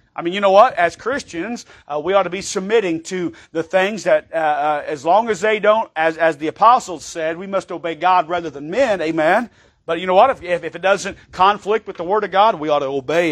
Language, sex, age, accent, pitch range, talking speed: English, male, 40-59, American, 155-195 Hz, 250 wpm